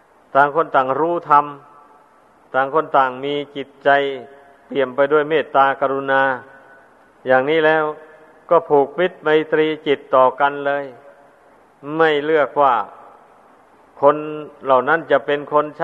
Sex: male